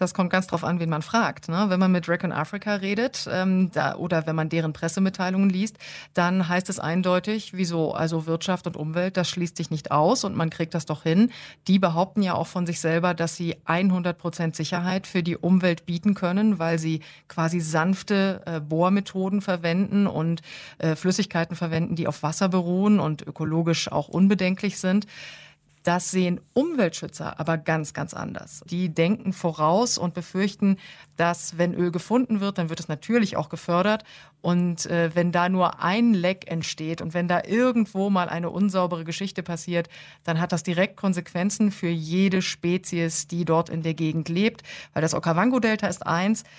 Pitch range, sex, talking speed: 165-190 Hz, female, 180 wpm